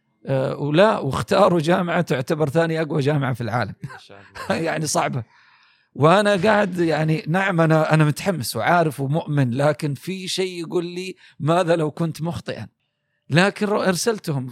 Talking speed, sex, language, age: 130 wpm, male, Arabic, 40-59